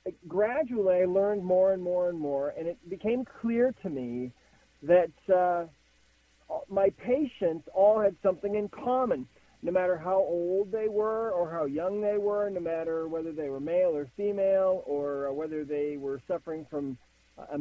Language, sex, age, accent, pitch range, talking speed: English, male, 40-59, American, 155-205 Hz, 165 wpm